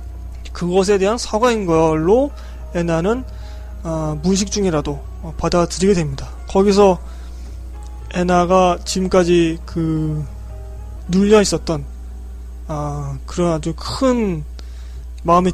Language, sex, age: Korean, male, 20-39